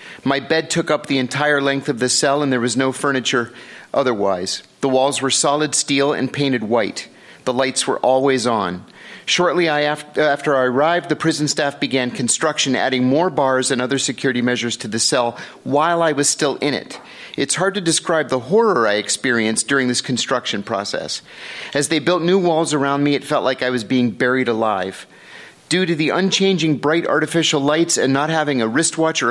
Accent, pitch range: American, 125-150 Hz